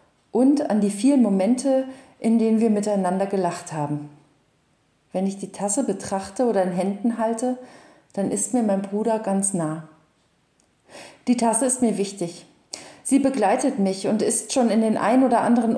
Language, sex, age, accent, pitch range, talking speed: German, female, 40-59, German, 190-240 Hz, 165 wpm